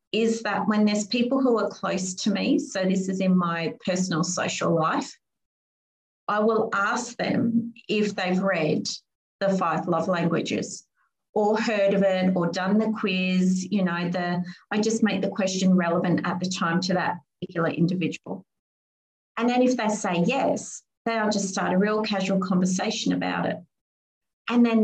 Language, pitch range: English, 185-230 Hz